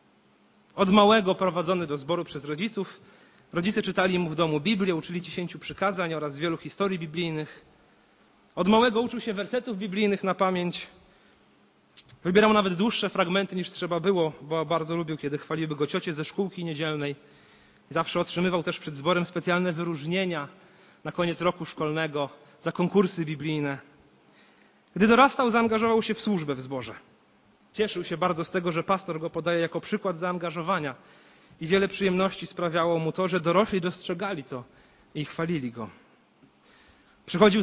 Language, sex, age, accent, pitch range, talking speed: Polish, male, 40-59, native, 165-205 Hz, 150 wpm